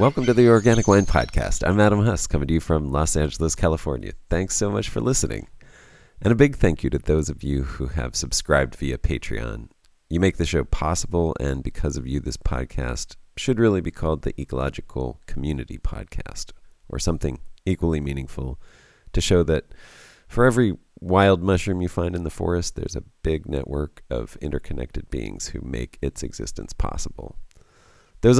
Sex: male